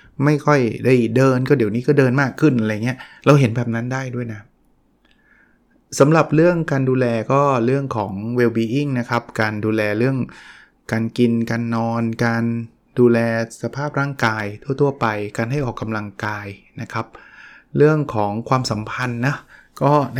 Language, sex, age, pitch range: Thai, male, 20-39, 110-140 Hz